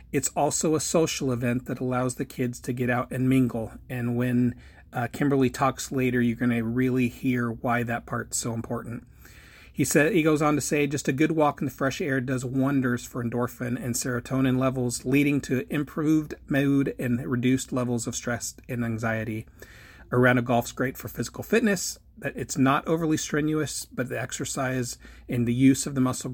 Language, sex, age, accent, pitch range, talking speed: English, male, 40-59, American, 120-130 Hz, 195 wpm